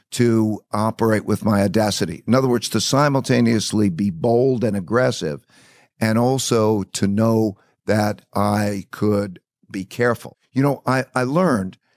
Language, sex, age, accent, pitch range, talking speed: English, male, 50-69, American, 105-135 Hz, 140 wpm